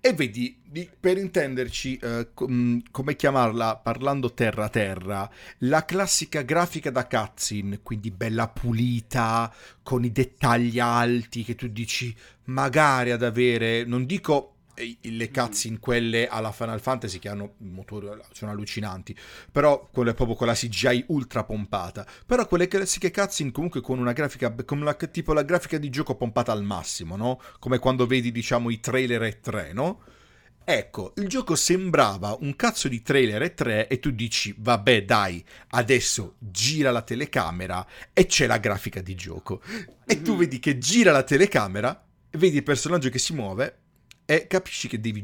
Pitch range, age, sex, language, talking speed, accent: 110-145 Hz, 40-59, male, Italian, 160 wpm, native